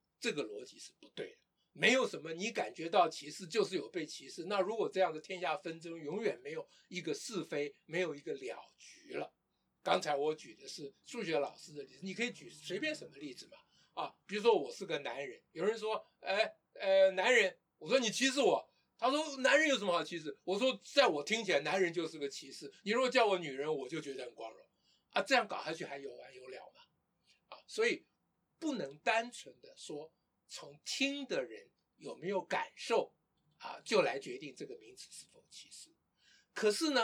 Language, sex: Chinese, male